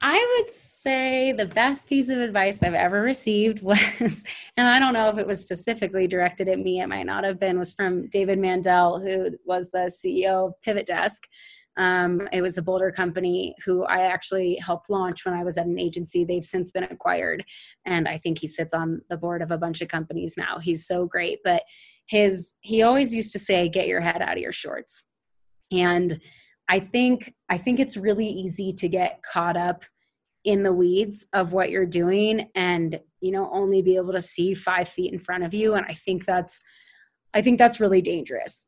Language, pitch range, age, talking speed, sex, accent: English, 180-210 Hz, 30-49, 205 wpm, female, American